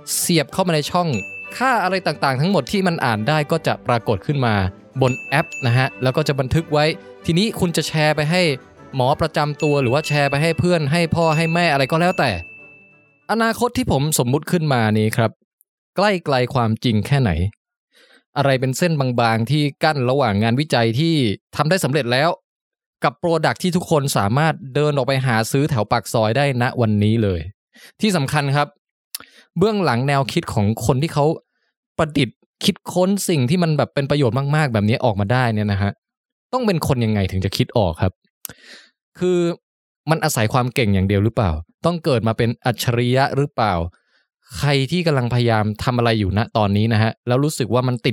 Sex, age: male, 20-39